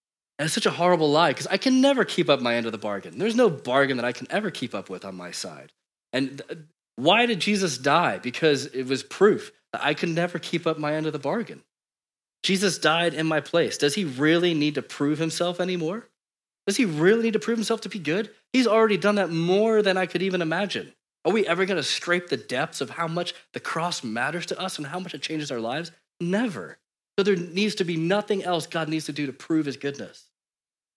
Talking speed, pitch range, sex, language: 235 wpm, 120-175 Hz, male, English